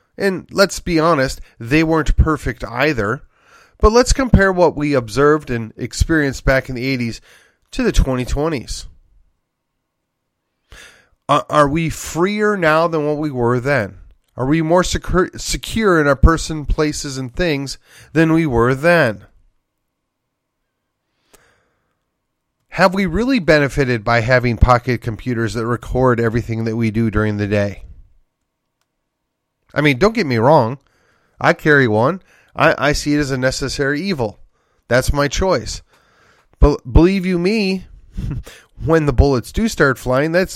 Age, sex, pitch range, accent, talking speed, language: 30-49, male, 115-170 Hz, American, 140 wpm, English